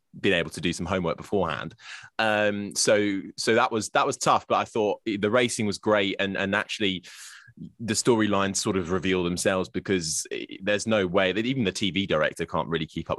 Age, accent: 20-39, British